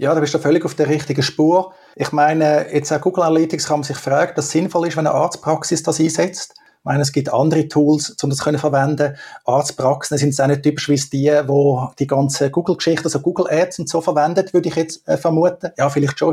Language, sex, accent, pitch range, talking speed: German, male, Austrian, 140-160 Hz, 230 wpm